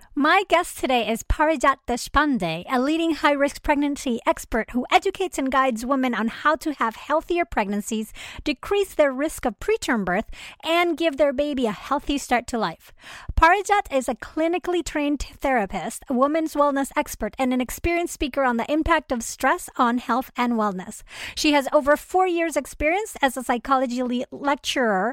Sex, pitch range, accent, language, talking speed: female, 245-315 Hz, American, English, 165 wpm